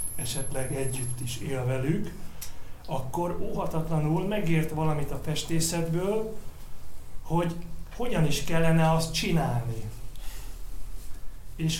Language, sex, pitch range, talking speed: Hungarian, male, 130-175 Hz, 90 wpm